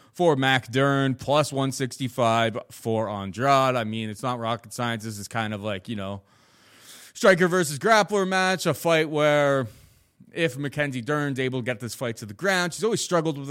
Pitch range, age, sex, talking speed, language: 115-150 Hz, 20-39, male, 185 wpm, English